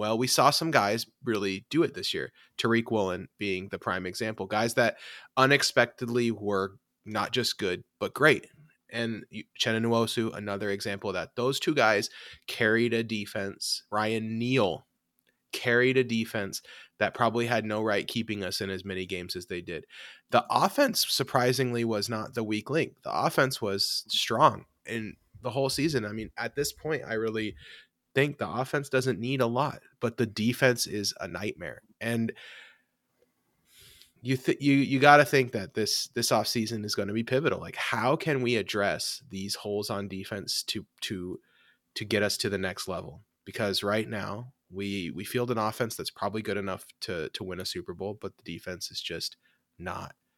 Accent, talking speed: American, 175 wpm